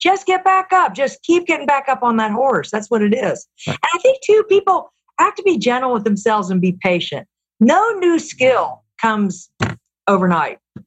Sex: female